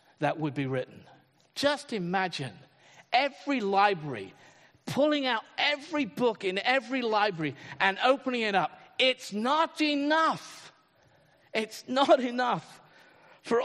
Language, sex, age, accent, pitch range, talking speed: English, male, 50-69, British, 150-220 Hz, 115 wpm